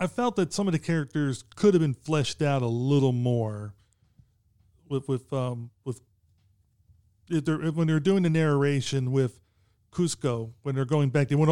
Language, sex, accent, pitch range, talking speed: English, male, American, 115-150 Hz, 190 wpm